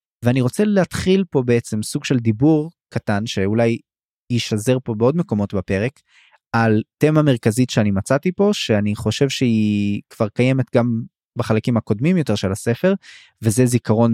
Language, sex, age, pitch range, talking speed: Hebrew, male, 20-39, 105-130 Hz, 145 wpm